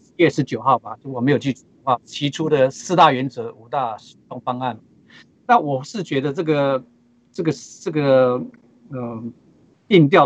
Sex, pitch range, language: male, 125-160 Hz, Chinese